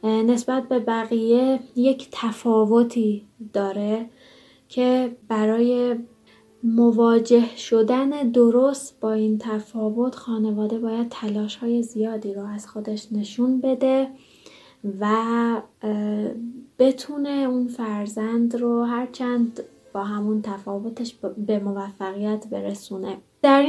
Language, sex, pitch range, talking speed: Persian, female, 210-245 Hz, 95 wpm